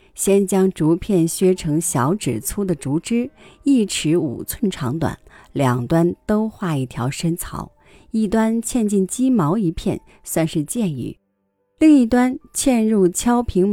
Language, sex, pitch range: Chinese, female, 145-210 Hz